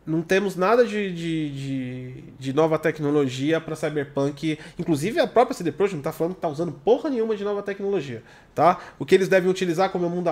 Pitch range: 145-190 Hz